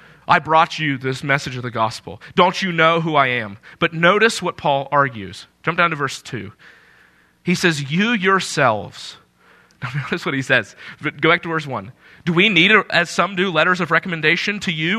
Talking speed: 190 wpm